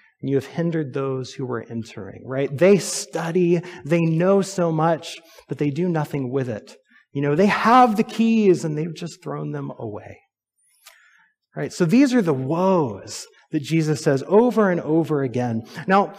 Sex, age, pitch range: male, 30-49, 140-195 Hz